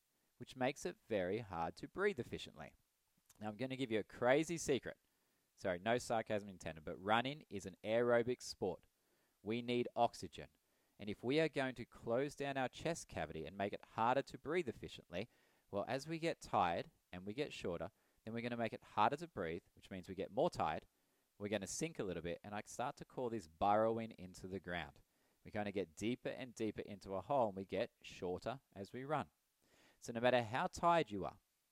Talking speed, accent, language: 215 wpm, Australian, English